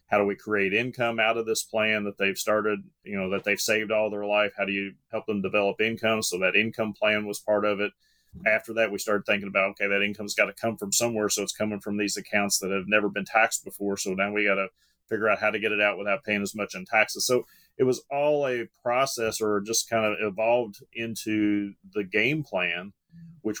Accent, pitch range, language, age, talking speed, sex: American, 100-110 Hz, English, 30-49, 245 wpm, male